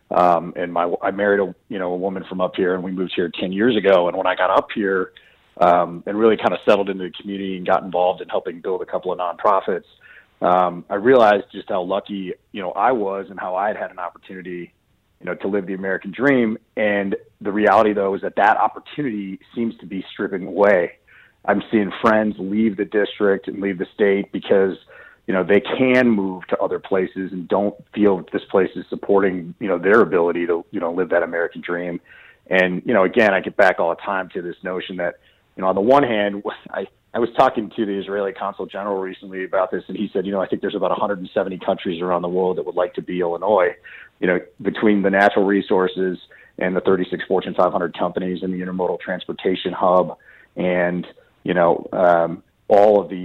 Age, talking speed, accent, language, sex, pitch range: 30-49, 220 wpm, American, English, male, 90-100 Hz